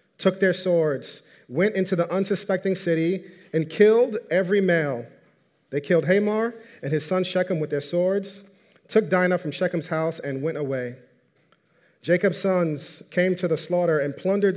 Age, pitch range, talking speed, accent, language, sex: 40-59, 145-180 Hz, 155 wpm, American, English, male